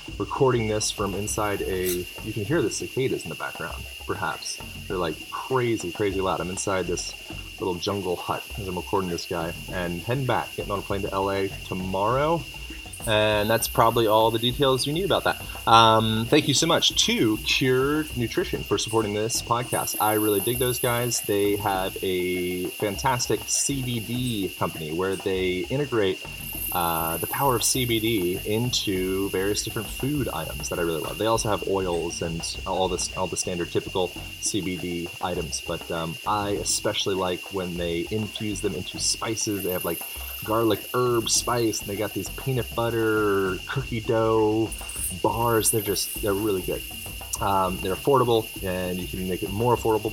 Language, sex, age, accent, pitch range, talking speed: English, male, 30-49, American, 90-115 Hz, 170 wpm